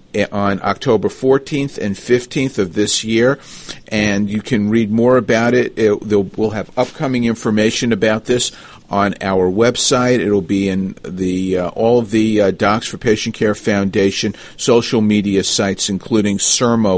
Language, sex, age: English, male, 50-69